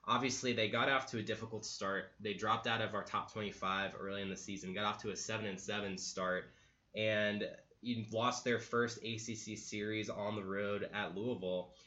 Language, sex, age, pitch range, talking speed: English, male, 20-39, 95-110 Hz, 185 wpm